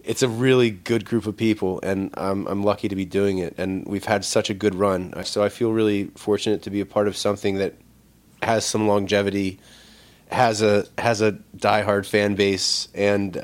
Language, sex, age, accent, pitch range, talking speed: English, male, 20-39, American, 95-110 Hz, 200 wpm